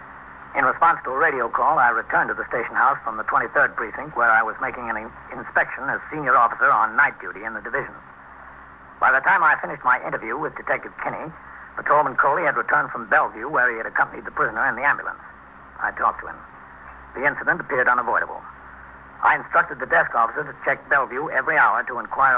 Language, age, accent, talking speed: English, 60-79, American, 205 wpm